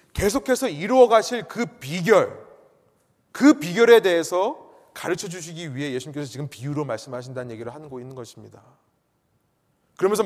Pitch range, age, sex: 150-215 Hz, 30-49, male